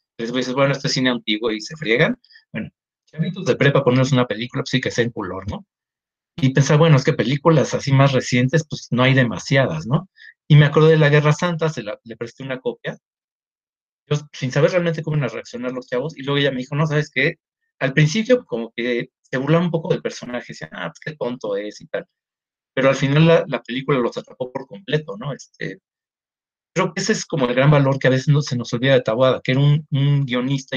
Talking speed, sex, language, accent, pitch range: 240 wpm, male, Spanish, Mexican, 125-160 Hz